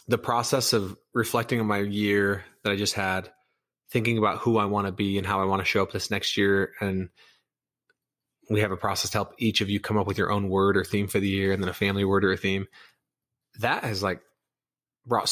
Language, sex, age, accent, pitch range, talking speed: English, male, 30-49, American, 100-120 Hz, 240 wpm